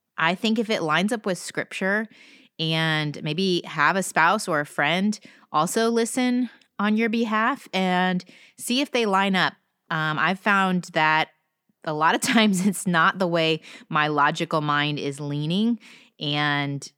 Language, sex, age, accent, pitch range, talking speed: English, female, 20-39, American, 155-220 Hz, 160 wpm